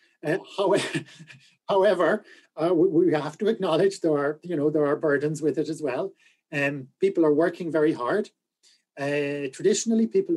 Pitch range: 145-200 Hz